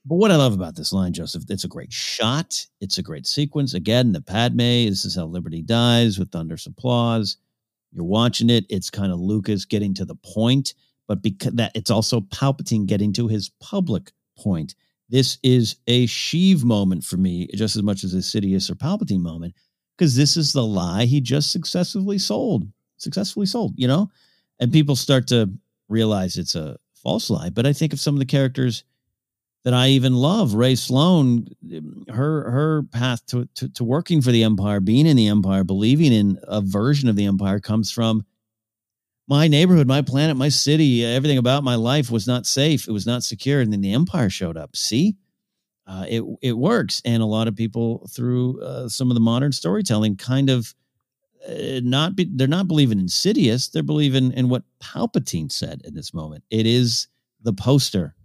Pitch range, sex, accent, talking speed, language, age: 105-140 Hz, male, American, 195 wpm, English, 50-69